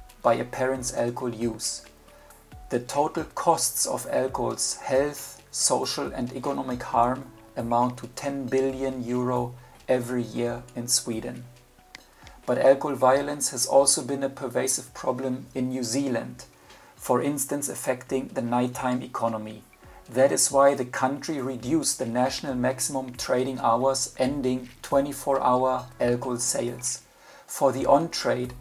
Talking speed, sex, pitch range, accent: 125 wpm, male, 120-135 Hz, German